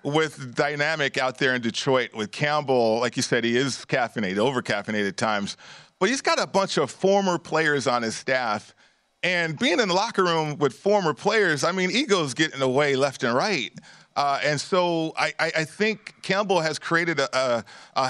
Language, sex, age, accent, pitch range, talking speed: English, male, 40-59, American, 125-165 Hz, 195 wpm